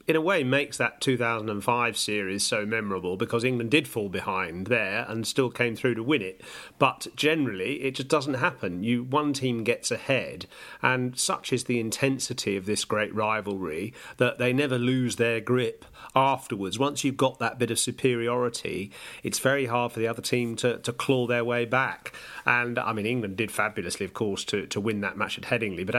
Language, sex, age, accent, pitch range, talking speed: English, male, 40-59, British, 110-130 Hz, 195 wpm